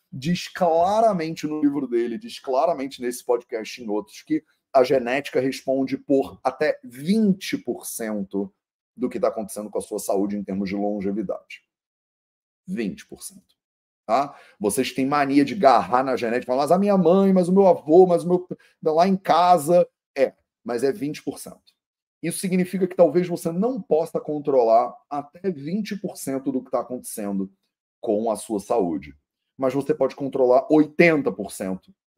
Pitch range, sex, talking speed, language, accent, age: 125-175 Hz, male, 155 wpm, Portuguese, Brazilian, 30-49